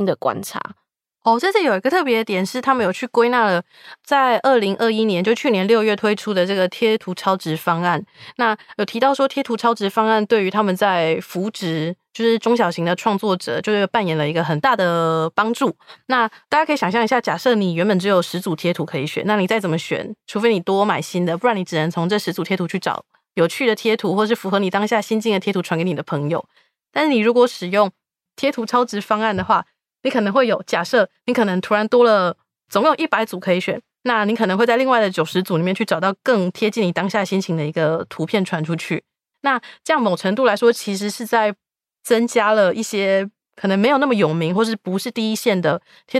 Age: 20-39